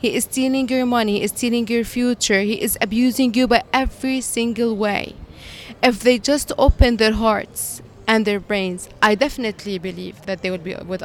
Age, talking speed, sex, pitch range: 20-39, 190 wpm, female, 215-280 Hz